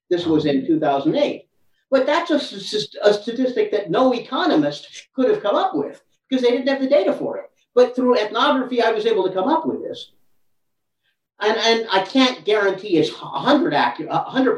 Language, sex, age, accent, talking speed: English, male, 50-69, American, 180 wpm